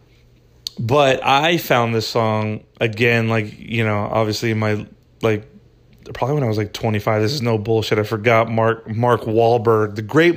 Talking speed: 175 wpm